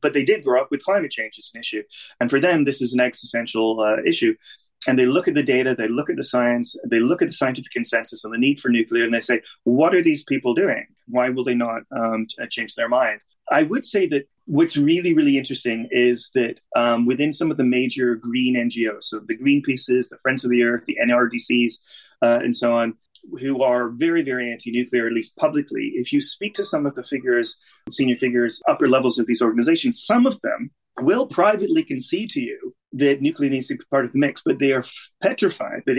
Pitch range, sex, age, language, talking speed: 120-200 Hz, male, 30-49, English, 225 wpm